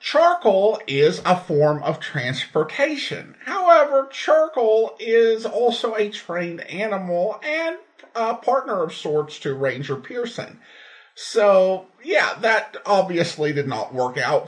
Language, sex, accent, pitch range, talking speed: English, male, American, 145-225 Hz, 120 wpm